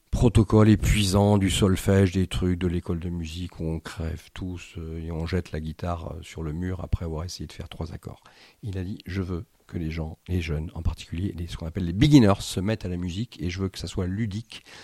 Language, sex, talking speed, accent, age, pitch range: French, male, 240 wpm, French, 50-69, 90-115 Hz